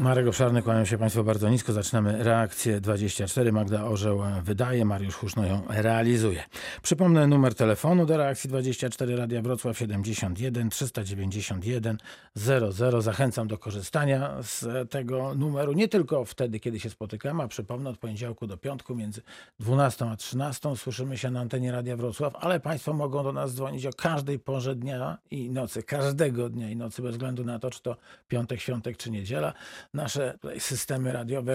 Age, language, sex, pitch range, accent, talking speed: 40-59, Polish, male, 115-135 Hz, native, 160 wpm